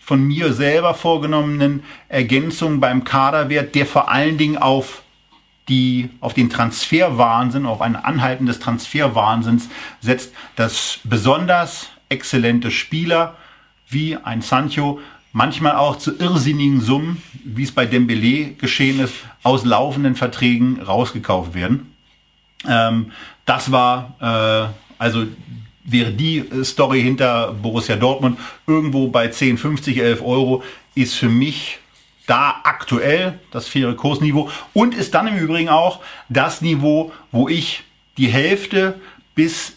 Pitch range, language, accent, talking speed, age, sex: 115-140 Hz, German, German, 120 wpm, 40-59, male